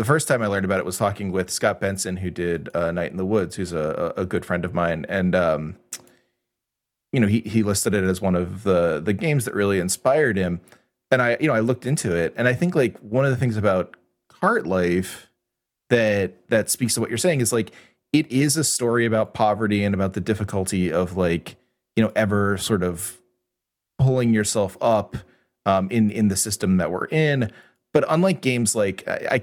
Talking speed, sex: 215 wpm, male